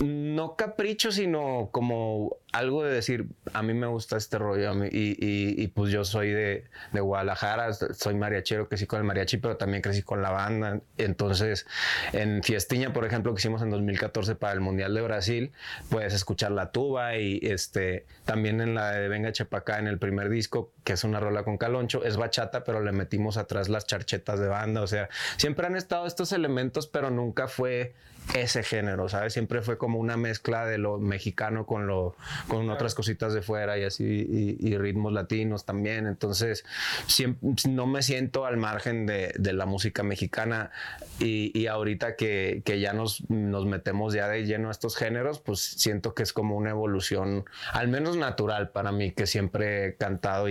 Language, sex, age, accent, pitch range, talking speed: Spanish, male, 20-39, Mexican, 100-115 Hz, 185 wpm